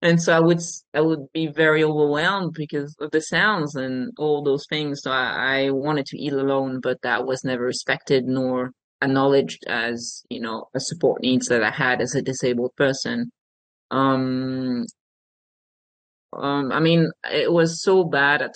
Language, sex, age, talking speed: English, male, 20-39, 170 wpm